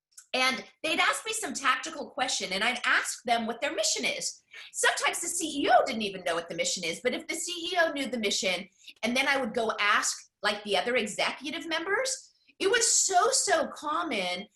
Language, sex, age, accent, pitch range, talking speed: English, female, 30-49, American, 220-335 Hz, 200 wpm